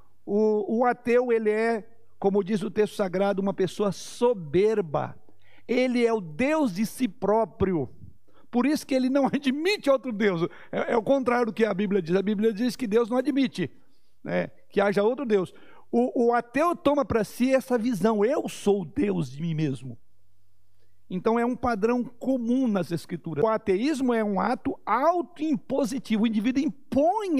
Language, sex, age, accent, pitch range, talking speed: Portuguese, male, 60-79, Brazilian, 190-255 Hz, 175 wpm